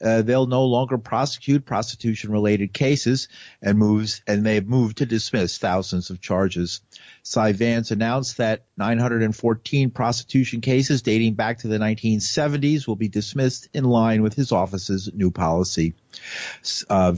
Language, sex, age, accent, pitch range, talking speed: English, male, 50-69, American, 105-130 Hz, 145 wpm